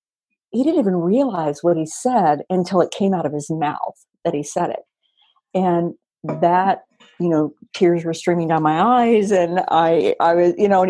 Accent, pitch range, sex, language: American, 165-215 Hz, female, English